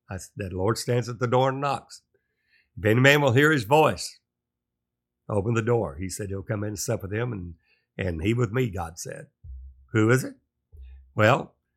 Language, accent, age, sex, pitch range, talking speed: English, American, 60-79, male, 95-120 Hz, 200 wpm